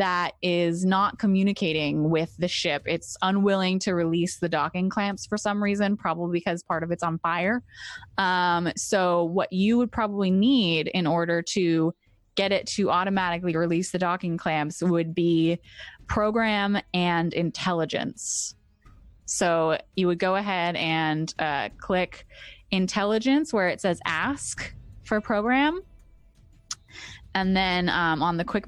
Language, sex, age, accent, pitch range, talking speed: English, female, 20-39, American, 165-185 Hz, 140 wpm